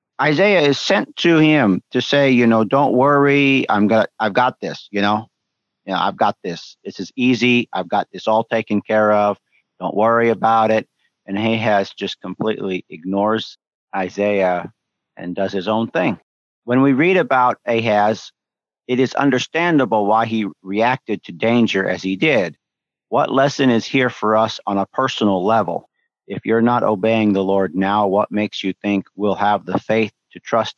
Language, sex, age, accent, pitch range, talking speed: English, male, 50-69, American, 100-125 Hz, 180 wpm